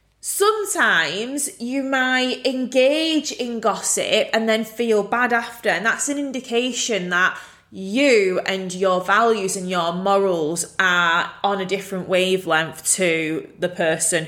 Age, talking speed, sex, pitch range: 20-39, 130 wpm, female, 175-240 Hz